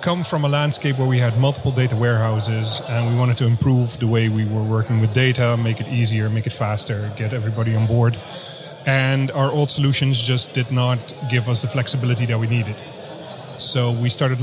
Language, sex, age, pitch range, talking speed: Dutch, male, 30-49, 115-135 Hz, 205 wpm